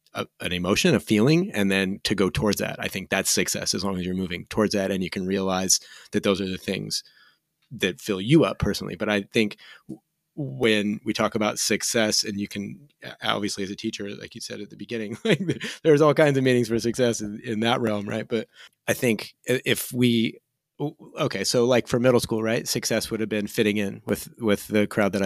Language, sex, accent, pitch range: English, male, American, 100-115 Hz